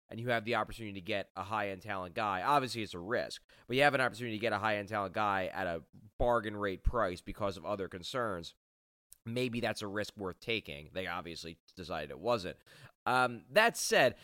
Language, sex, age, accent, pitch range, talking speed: English, male, 30-49, American, 85-115 Hz, 205 wpm